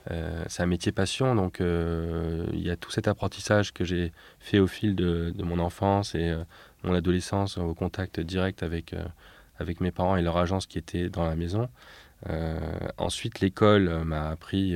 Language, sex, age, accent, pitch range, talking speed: French, male, 20-39, French, 85-95 Hz, 190 wpm